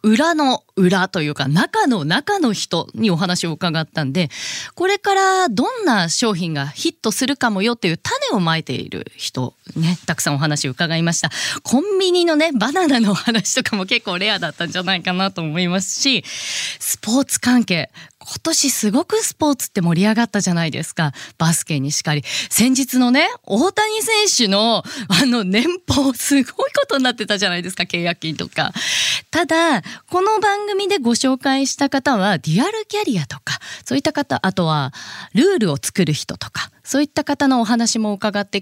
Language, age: Japanese, 20-39